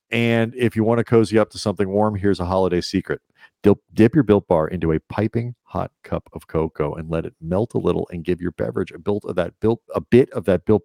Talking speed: 250 wpm